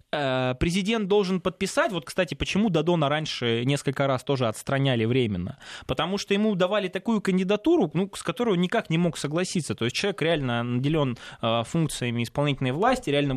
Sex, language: male, Russian